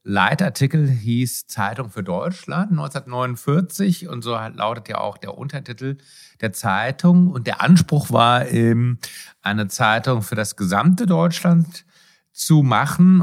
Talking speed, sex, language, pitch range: 125 wpm, male, Hungarian, 115-165 Hz